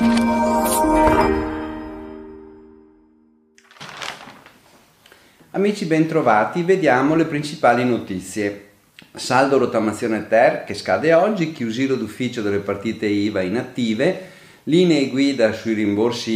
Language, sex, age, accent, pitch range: Italian, male, 40-59, native, 100-140 Hz